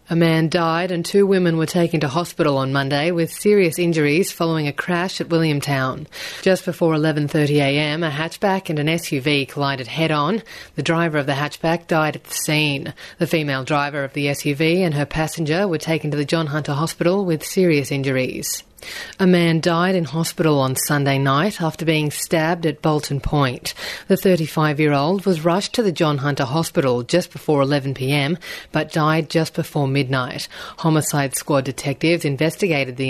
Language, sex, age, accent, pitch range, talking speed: English, female, 30-49, Australian, 145-175 Hz, 170 wpm